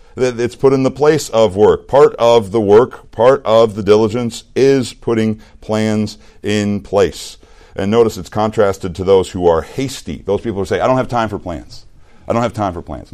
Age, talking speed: 50-69, 210 wpm